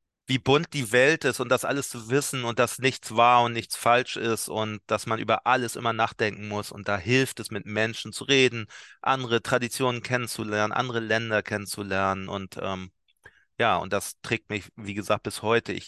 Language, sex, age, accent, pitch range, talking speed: German, male, 30-49, German, 100-120 Hz, 195 wpm